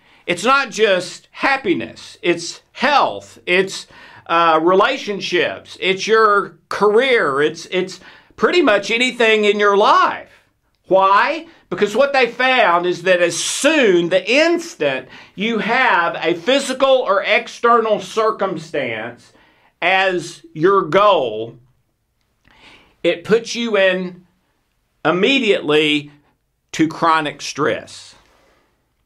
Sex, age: male, 50-69